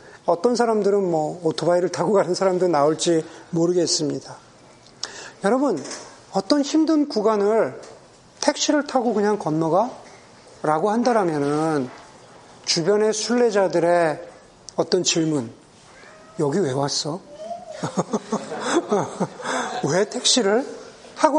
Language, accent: Korean, native